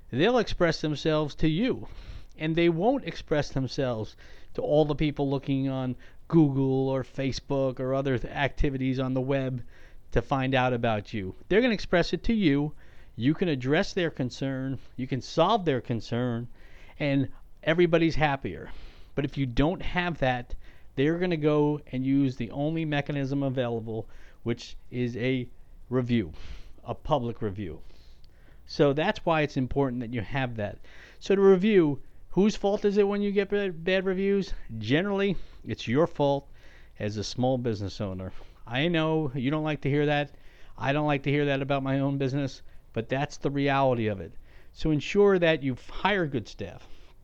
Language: English